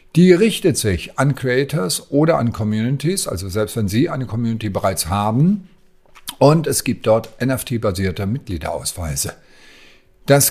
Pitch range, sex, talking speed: 100-140 Hz, male, 130 wpm